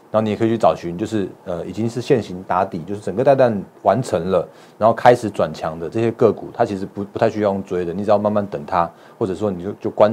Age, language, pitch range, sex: 30-49, Chinese, 95-110 Hz, male